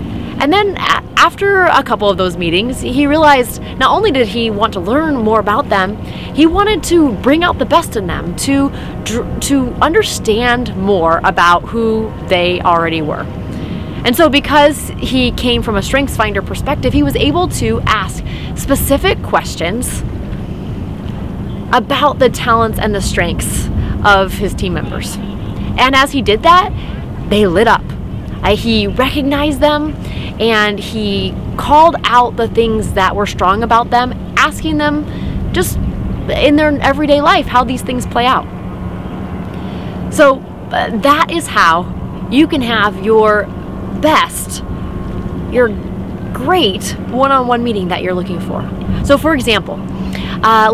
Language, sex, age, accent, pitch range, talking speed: English, female, 30-49, American, 195-285 Hz, 145 wpm